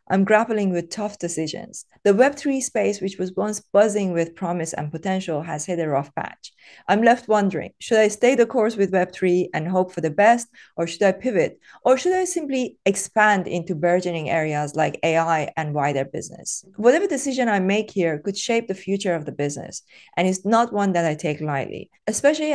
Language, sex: English, female